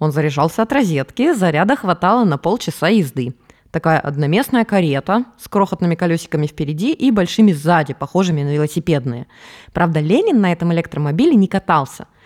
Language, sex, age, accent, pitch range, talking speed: Russian, female, 20-39, native, 145-195 Hz, 140 wpm